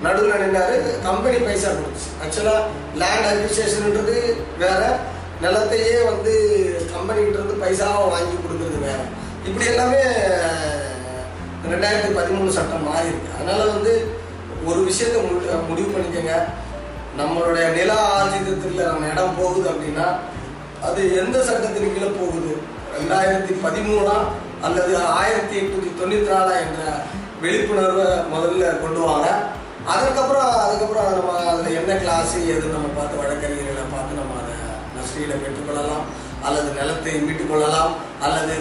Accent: native